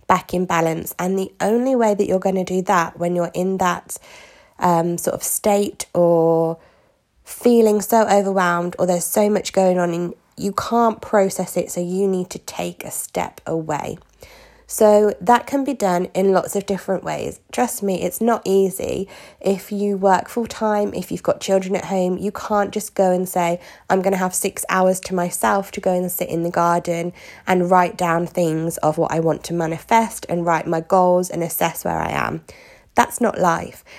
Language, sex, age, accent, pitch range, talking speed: English, female, 20-39, British, 175-215 Hz, 200 wpm